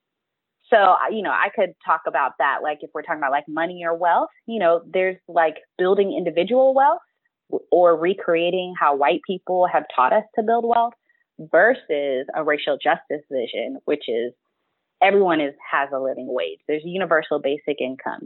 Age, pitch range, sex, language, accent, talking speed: 20-39, 160-235 Hz, female, English, American, 170 wpm